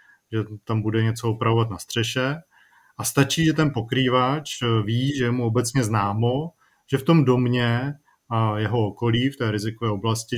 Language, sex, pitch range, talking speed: Czech, male, 115-135 Hz, 170 wpm